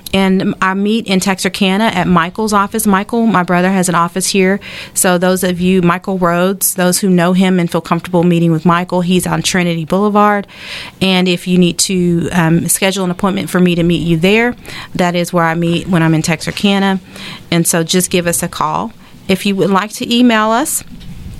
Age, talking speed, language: 40-59, 205 wpm, English